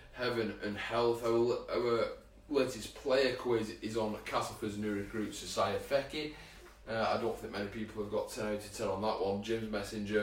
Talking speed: 175 wpm